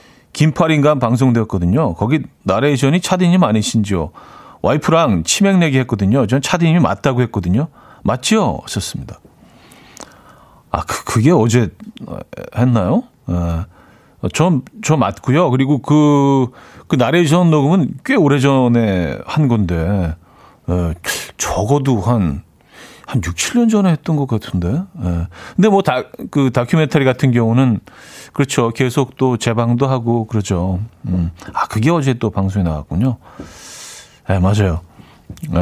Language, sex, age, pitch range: Korean, male, 40-59, 105-155 Hz